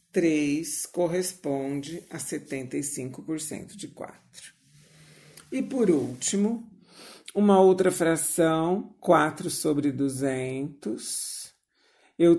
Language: Portuguese